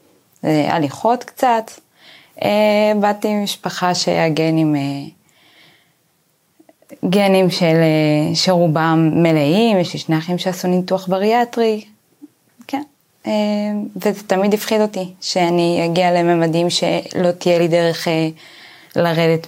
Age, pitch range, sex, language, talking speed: 20-39, 165-205 Hz, female, Hebrew, 110 wpm